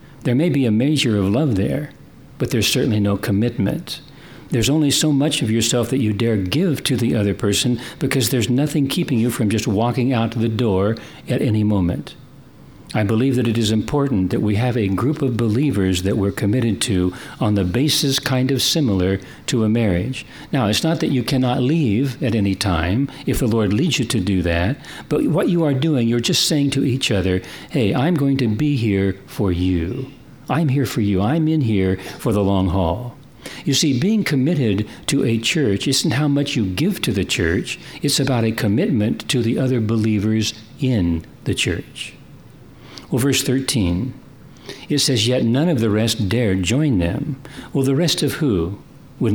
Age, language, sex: 60-79, English, male